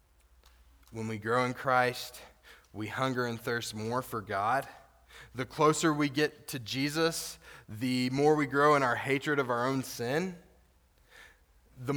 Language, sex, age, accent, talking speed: English, male, 20-39, American, 150 wpm